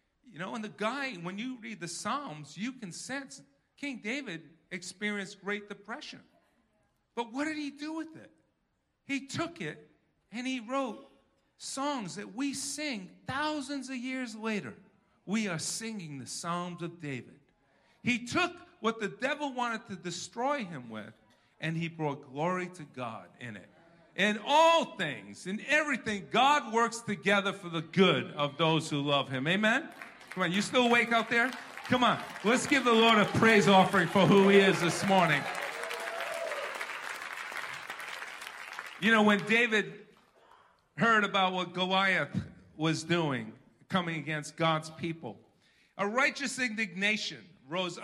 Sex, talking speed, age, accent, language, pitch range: male, 150 wpm, 50-69, American, English, 170-240 Hz